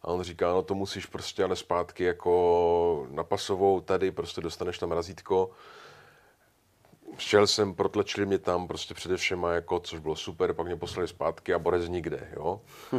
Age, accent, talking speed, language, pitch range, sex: 30-49, native, 165 wpm, Czech, 90-105 Hz, male